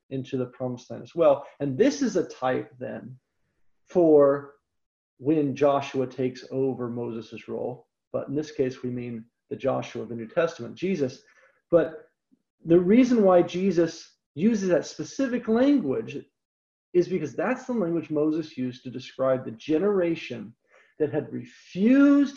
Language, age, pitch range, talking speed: English, 40-59, 135-205 Hz, 150 wpm